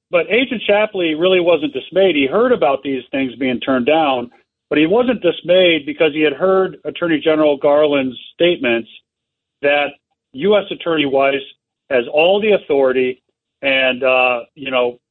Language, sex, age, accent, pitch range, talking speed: English, male, 50-69, American, 125-170 Hz, 150 wpm